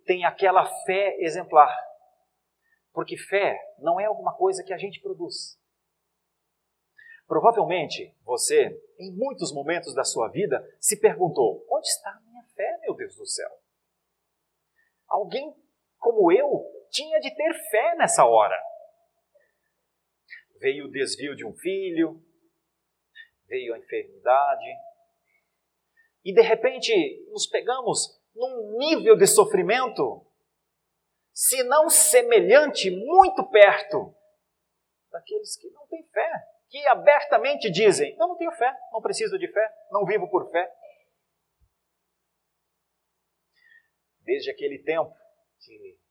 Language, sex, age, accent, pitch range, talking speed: Portuguese, male, 40-59, Brazilian, 295-425 Hz, 115 wpm